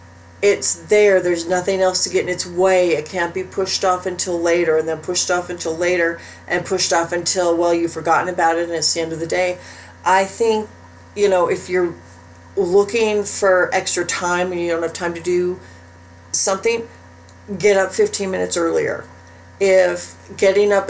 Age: 40-59